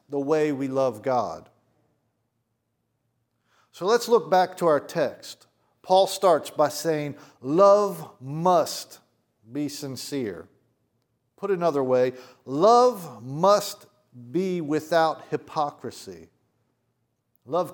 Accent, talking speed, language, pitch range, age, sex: American, 100 wpm, English, 125-180 Hz, 50-69, male